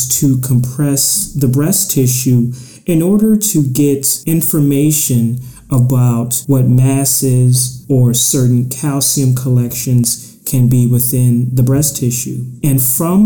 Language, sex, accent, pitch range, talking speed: English, male, American, 125-145 Hz, 115 wpm